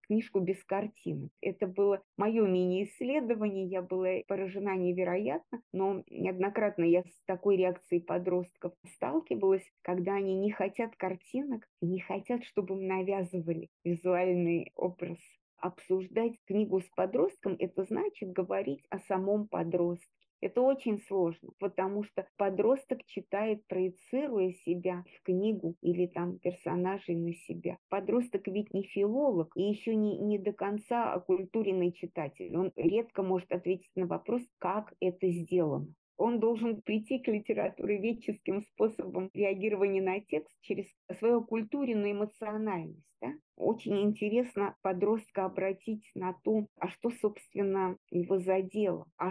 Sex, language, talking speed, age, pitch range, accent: female, Russian, 125 wpm, 30-49, 180-210 Hz, native